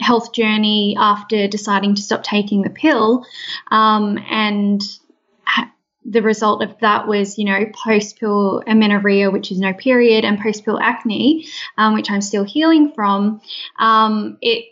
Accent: Australian